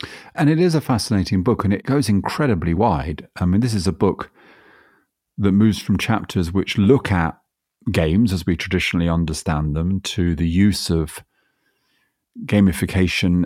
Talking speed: 155 wpm